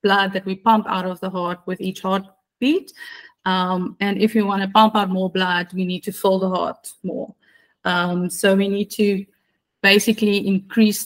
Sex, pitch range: female, 185-210 Hz